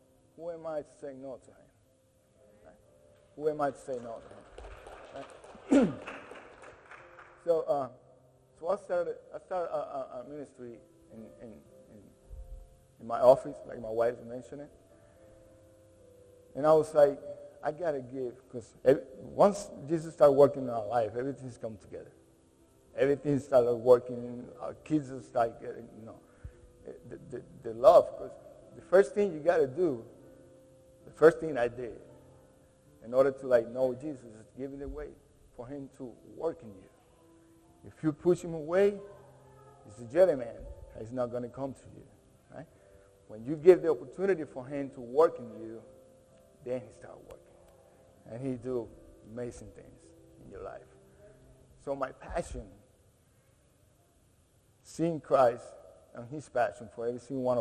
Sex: male